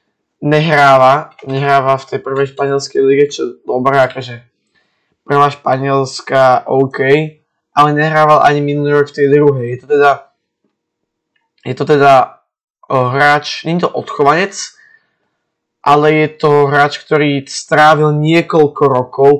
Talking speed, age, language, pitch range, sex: 125 wpm, 20-39, Slovak, 135-155 Hz, male